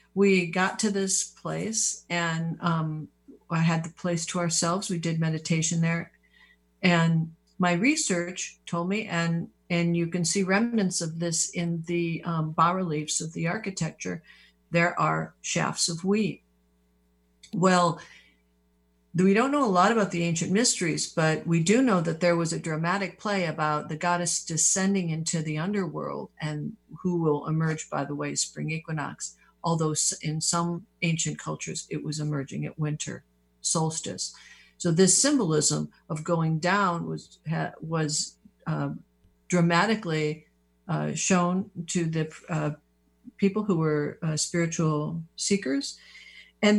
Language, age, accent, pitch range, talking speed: English, 50-69, American, 155-190 Hz, 140 wpm